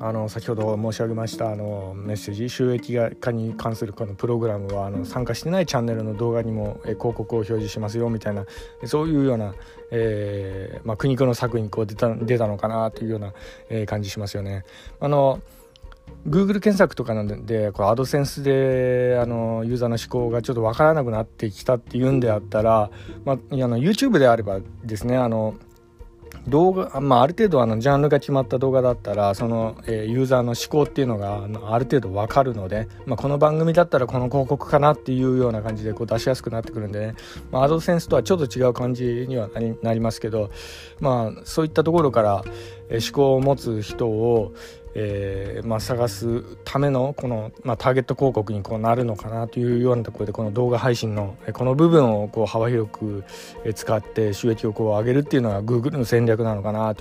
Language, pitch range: Japanese, 110-130 Hz